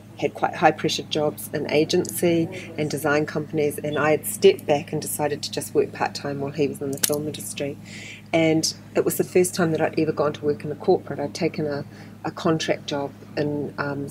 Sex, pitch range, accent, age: female, 140-160 Hz, Australian, 40-59